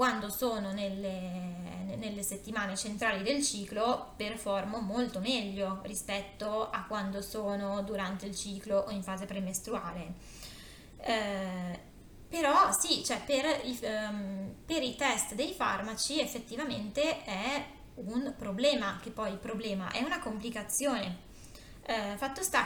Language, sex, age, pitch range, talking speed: Italian, female, 20-39, 195-255 Hz, 120 wpm